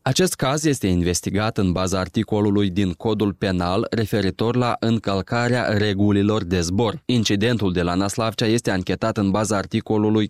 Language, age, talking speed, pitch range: Romanian, 20-39, 145 wpm, 95-110 Hz